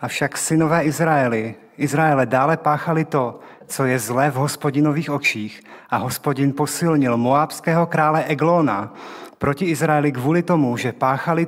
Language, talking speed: Czech, 130 wpm